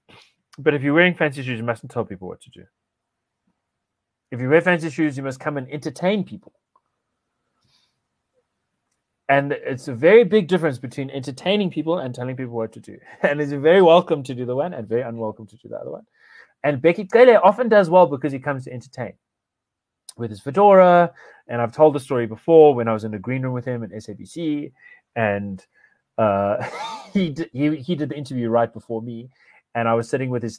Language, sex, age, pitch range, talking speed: English, male, 30-49, 110-155 Hz, 205 wpm